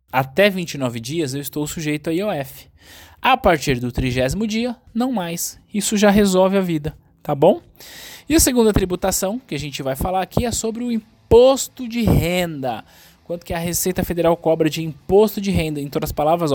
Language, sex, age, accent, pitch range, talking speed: Portuguese, male, 20-39, Brazilian, 135-185 Hz, 190 wpm